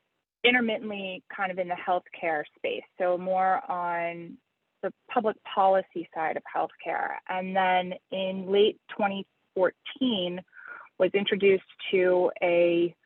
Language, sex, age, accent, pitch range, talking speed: English, female, 30-49, American, 180-220 Hz, 115 wpm